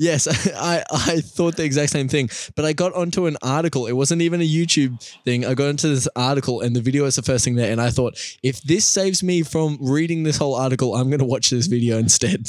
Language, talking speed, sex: English, 250 wpm, male